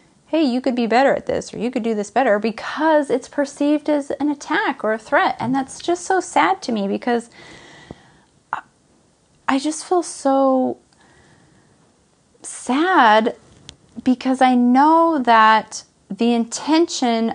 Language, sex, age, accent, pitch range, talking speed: English, female, 30-49, American, 215-290 Hz, 140 wpm